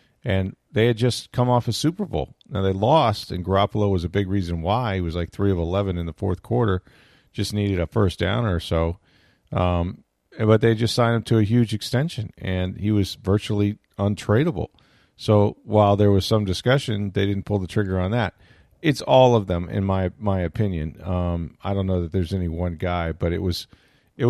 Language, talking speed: English, 210 wpm